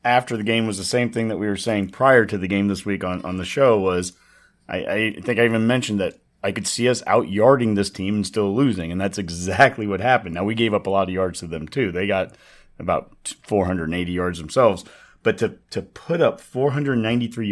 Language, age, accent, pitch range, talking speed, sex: English, 30-49, American, 95-120 Hz, 235 wpm, male